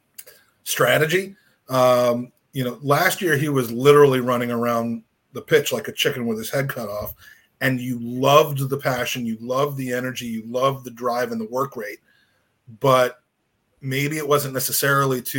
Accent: American